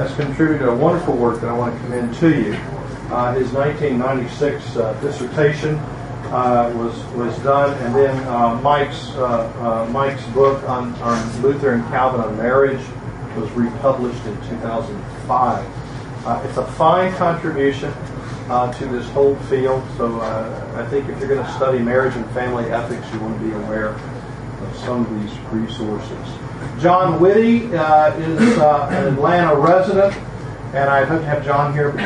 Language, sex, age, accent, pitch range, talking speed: English, male, 40-59, American, 120-140 Hz, 165 wpm